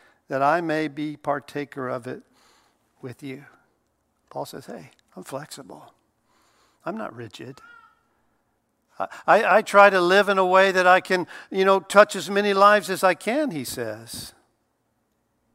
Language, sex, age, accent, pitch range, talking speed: English, male, 50-69, American, 140-180 Hz, 155 wpm